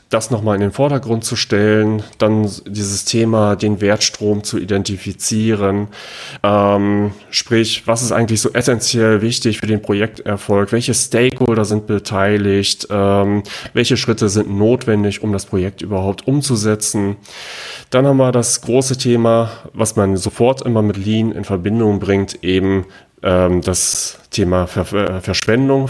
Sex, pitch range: male, 95-110 Hz